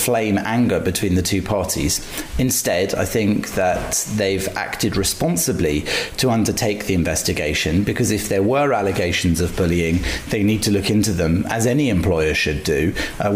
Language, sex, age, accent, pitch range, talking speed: English, male, 40-59, British, 95-110 Hz, 160 wpm